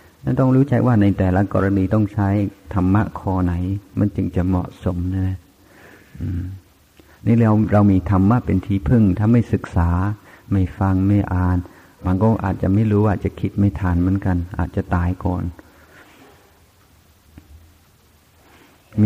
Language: Thai